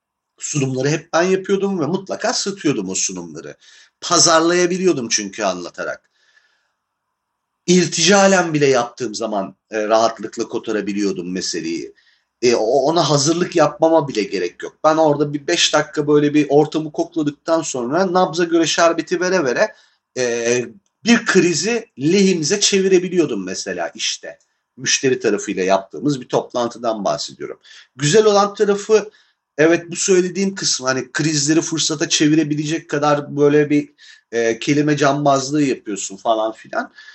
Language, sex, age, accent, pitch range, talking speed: Turkish, male, 40-59, native, 150-195 Hz, 125 wpm